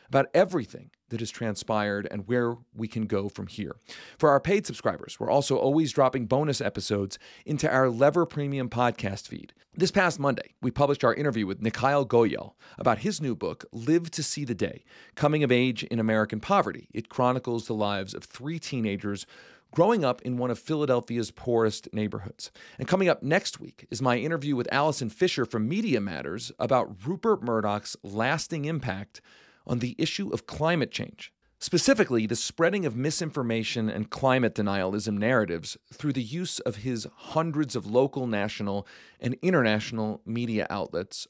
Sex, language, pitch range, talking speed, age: male, English, 110-145 Hz, 165 wpm, 40-59